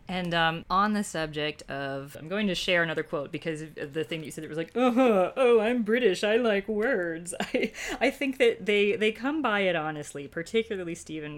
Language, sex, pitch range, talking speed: English, female, 160-205 Hz, 205 wpm